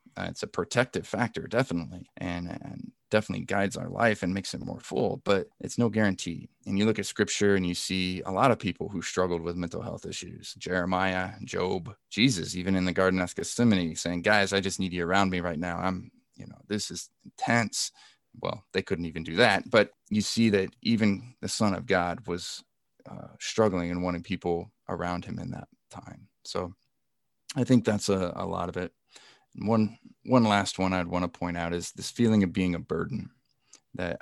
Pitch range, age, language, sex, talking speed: 90-105 Hz, 20-39, English, male, 205 wpm